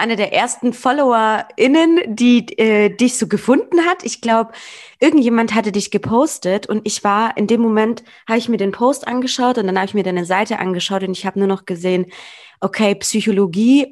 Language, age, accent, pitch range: German, 20-39, German, 185-230 Hz